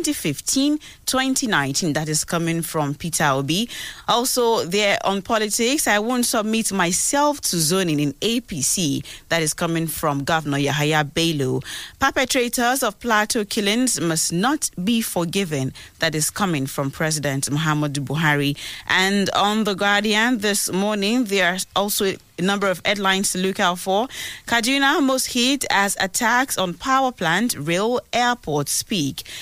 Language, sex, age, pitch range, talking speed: English, female, 30-49, 160-240 Hz, 140 wpm